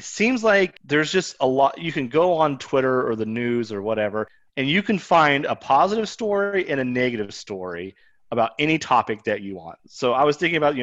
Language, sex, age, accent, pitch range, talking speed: English, male, 30-49, American, 125-170 Hz, 215 wpm